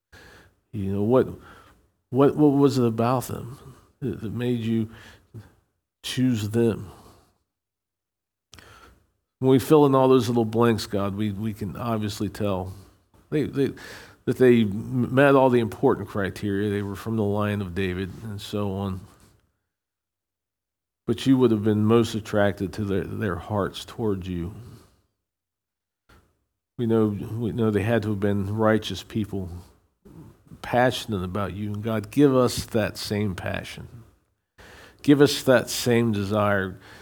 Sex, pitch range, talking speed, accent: male, 100-125 Hz, 140 wpm, American